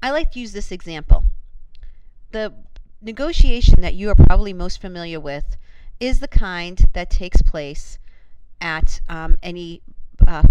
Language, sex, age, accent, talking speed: English, female, 40-59, American, 145 wpm